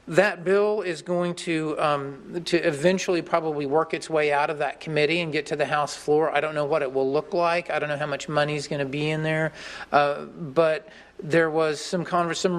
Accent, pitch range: American, 145-170 Hz